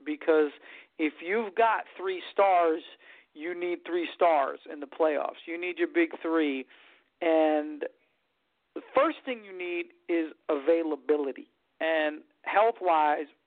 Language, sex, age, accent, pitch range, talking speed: English, male, 50-69, American, 160-215 Hz, 125 wpm